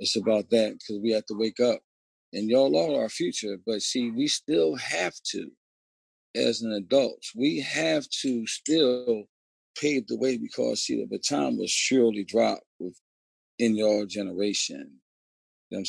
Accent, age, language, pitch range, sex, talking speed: American, 40-59, English, 95-115 Hz, male, 165 wpm